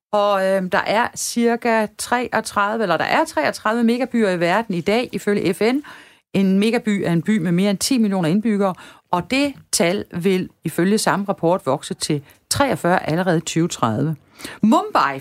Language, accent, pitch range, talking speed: Danish, native, 175-230 Hz, 165 wpm